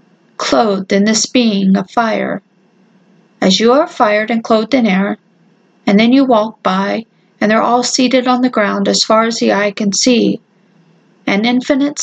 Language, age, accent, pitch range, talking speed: English, 40-59, American, 195-235 Hz, 175 wpm